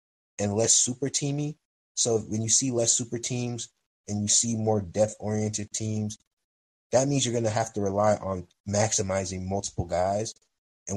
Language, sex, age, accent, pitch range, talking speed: English, male, 20-39, American, 95-115 Hz, 165 wpm